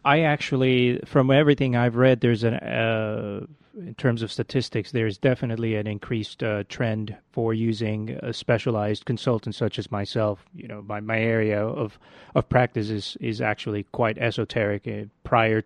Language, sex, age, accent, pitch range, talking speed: English, male, 30-49, American, 105-125 Hz, 160 wpm